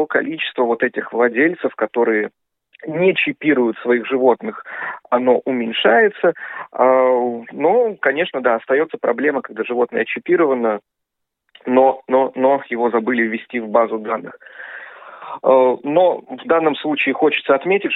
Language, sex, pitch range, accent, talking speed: Russian, male, 125-195 Hz, native, 115 wpm